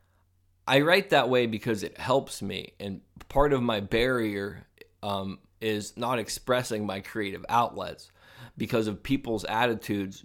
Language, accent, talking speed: English, American, 140 wpm